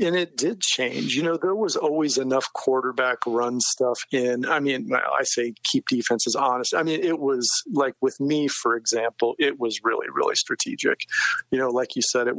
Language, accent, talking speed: English, American, 200 wpm